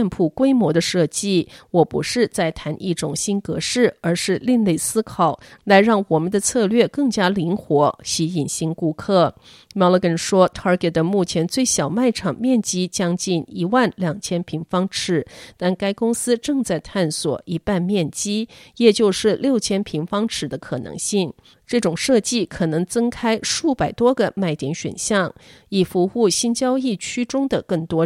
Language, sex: Chinese, female